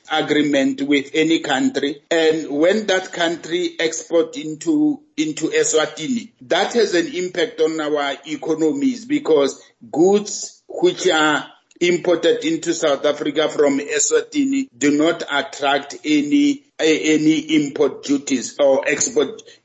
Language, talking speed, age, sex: English, 115 wpm, 50-69, male